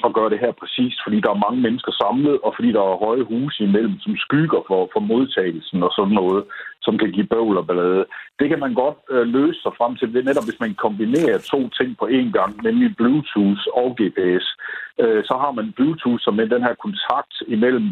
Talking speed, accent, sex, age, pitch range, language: 225 wpm, native, male, 60-79, 105-155 Hz, Danish